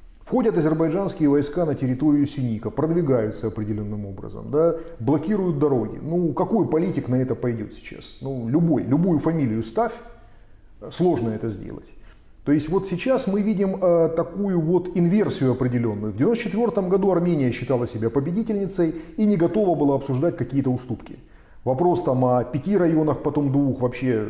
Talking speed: 145 wpm